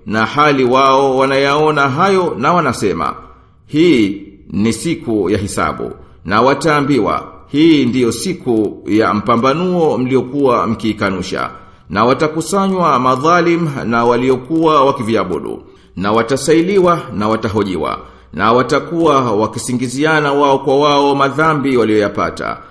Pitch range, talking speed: 110-150 Hz, 105 wpm